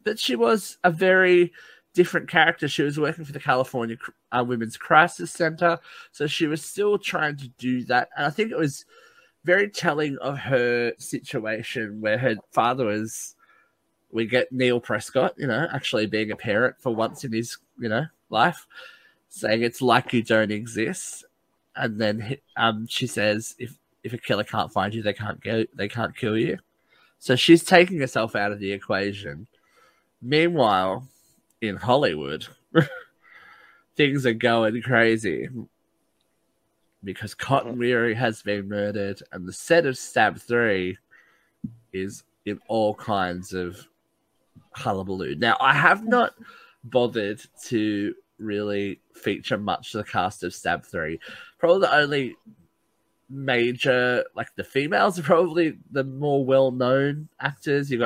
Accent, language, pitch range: Australian, English, 110-155 Hz